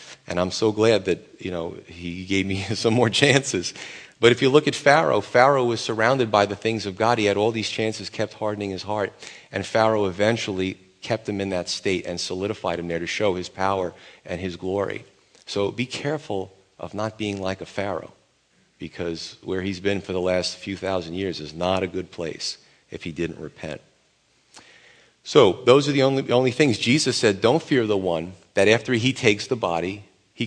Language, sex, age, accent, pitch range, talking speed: English, male, 40-59, American, 95-120 Hz, 205 wpm